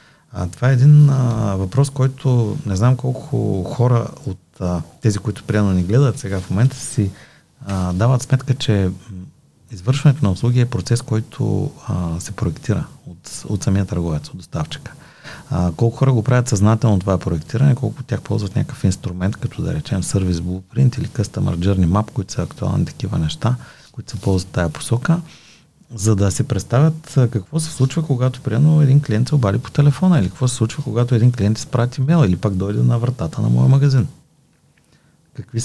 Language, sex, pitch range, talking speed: Bulgarian, male, 100-140 Hz, 180 wpm